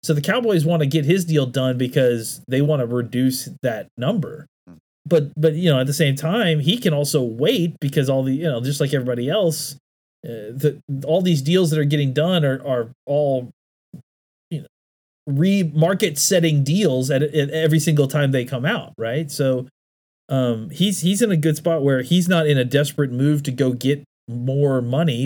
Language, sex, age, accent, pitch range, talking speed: English, male, 30-49, American, 115-155 Hz, 200 wpm